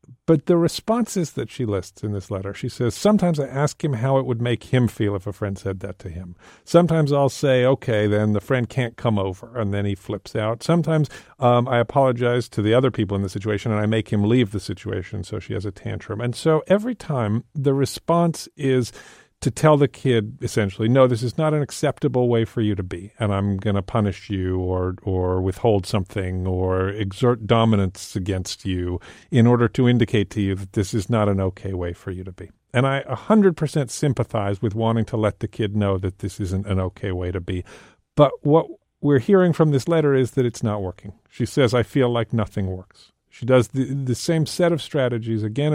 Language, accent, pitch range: English, American, 100-135 Hz